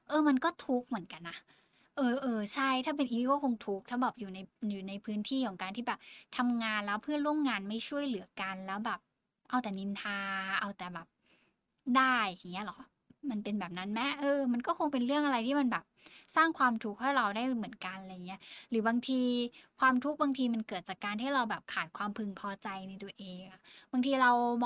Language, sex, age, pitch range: Thai, female, 10-29, 200-255 Hz